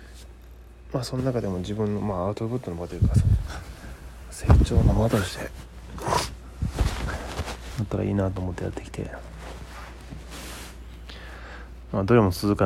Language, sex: Japanese, male